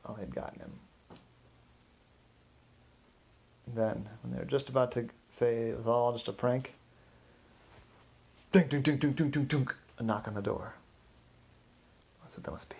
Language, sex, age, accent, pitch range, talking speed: English, male, 30-49, American, 110-145 Hz, 140 wpm